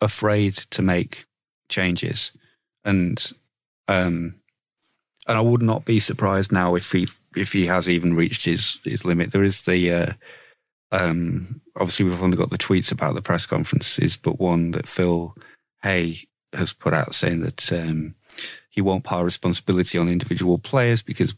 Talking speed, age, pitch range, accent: 160 wpm, 30-49, 90-110 Hz, British